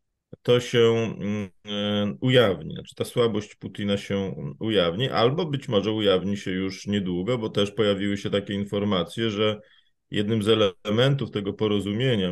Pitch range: 95-110 Hz